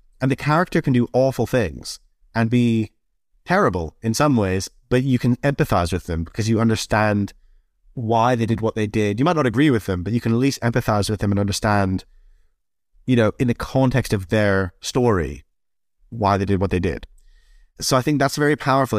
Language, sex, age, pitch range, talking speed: English, male, 30-49, 100-125 Hz, 200 wpm